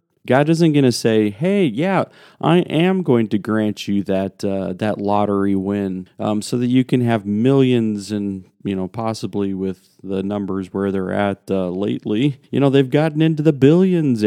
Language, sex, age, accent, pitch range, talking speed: English, male, 40-59, American, 100-125 Hz, 185 wpm